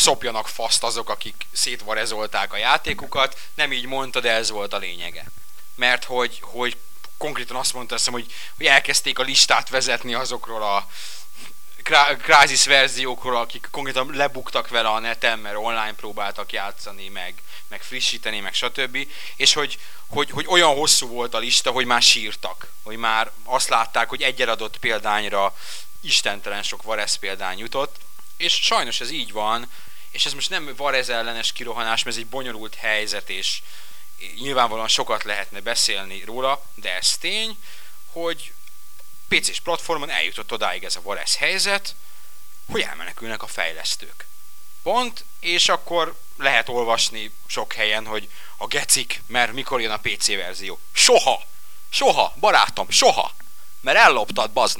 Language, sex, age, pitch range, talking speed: Hungarian, male, 30-49, 110-145 Hz, 145 wpm